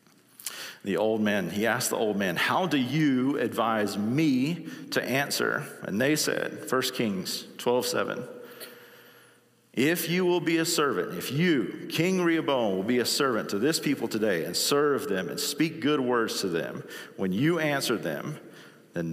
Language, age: English, 40-59